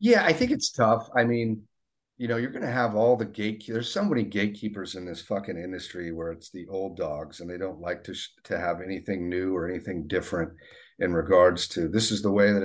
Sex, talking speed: male, 230 wpm